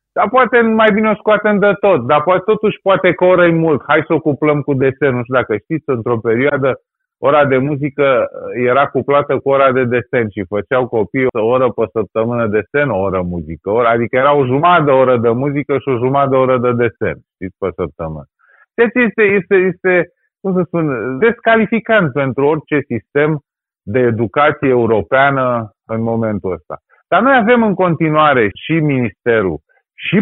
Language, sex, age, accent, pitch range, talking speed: Romanian, male, 30-49, native, 130-195 Hz, 175 wpm